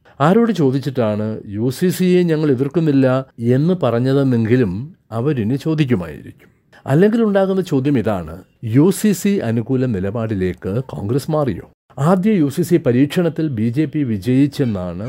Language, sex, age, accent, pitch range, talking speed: Malayalam, male, 60-79, native, 115-150 Hz, 105 wpm